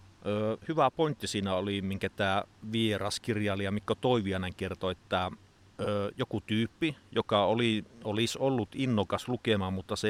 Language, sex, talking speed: Finnish, male, 135 wpm